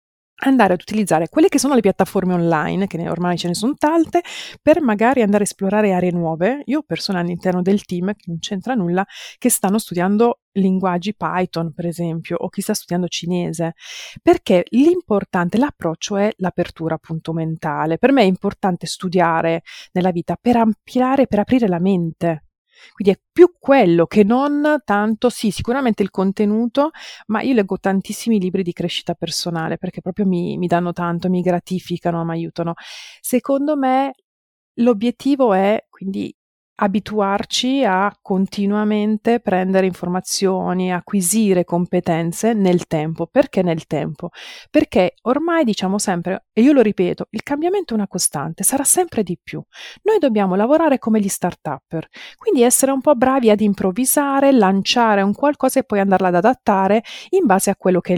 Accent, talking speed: native, 160 wpm